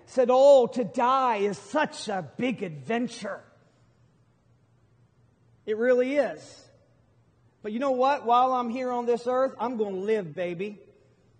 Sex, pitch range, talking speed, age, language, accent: male, 215-295 Hz, 140 wpm, 40-59, English, American